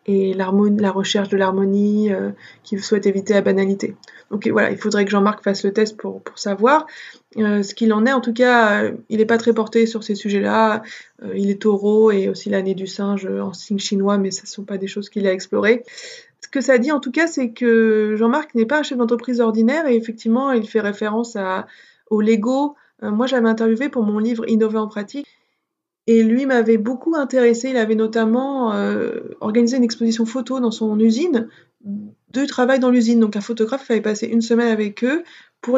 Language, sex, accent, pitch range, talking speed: French, female, French, 210-240 Hz, 215 wpm